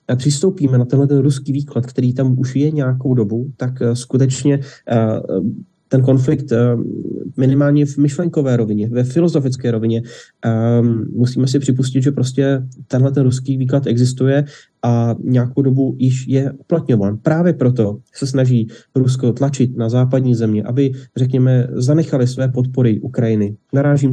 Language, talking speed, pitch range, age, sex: Slovak, 135 wpm, 120-140 Hz, 30-49, male